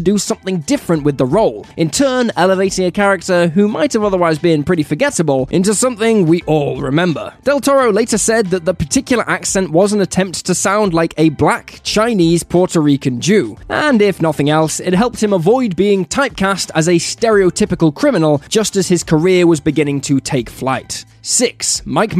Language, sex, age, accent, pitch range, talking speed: English, male, 10-29, British, 165-220 Hz, 185 wpm